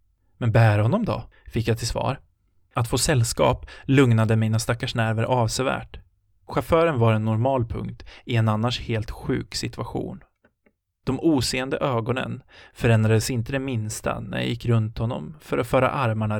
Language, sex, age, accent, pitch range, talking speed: Swedish, male, 20-39, native, 95-125 Hz, 155 wpm